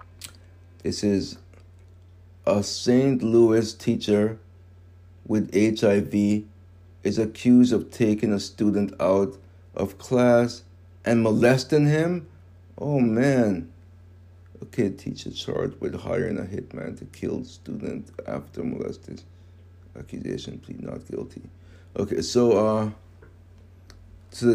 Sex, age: male, 60-79